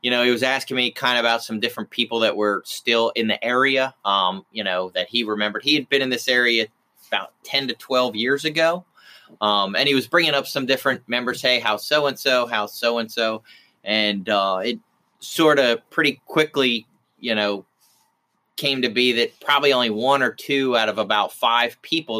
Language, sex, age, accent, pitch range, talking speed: English, male, 30-49, American, 110-135 Hz, 205 wpm